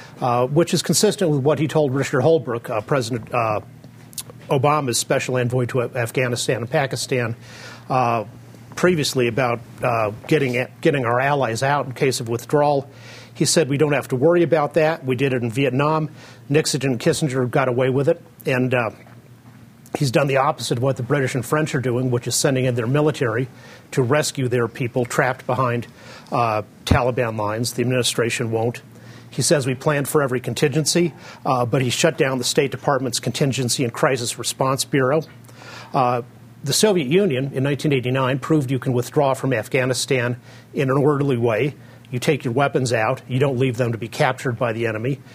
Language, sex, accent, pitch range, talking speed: English, male, American, 120-145 Hz, 180 wpm